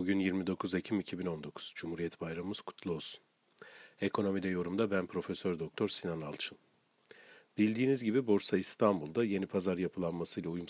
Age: 40-59